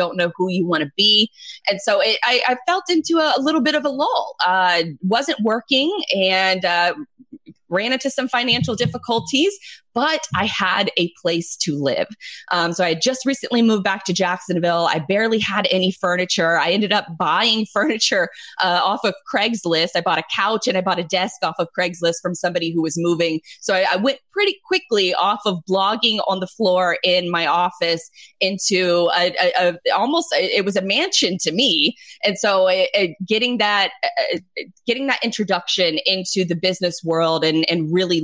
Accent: American